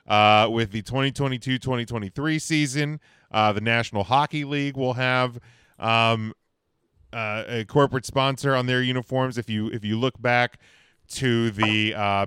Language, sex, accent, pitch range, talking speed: English, male, American, 100-130 Hz, 140 wpm